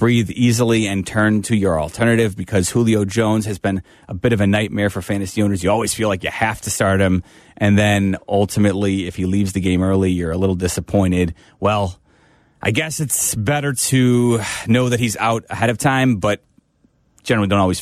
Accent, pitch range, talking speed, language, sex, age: American, 95-115 Hz, 200 wpm, English, male, 30-49